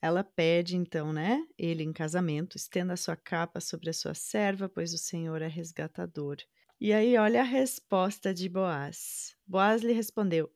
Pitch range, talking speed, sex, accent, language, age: 160-195 Hz, 165 wpm, female, Brazilian, Portuguese, 30-49